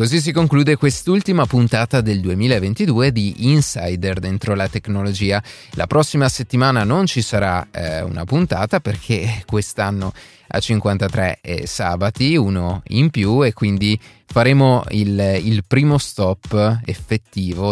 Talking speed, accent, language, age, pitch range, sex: 130 wpm, native, Italian, 30-49, 95-135 Hz, male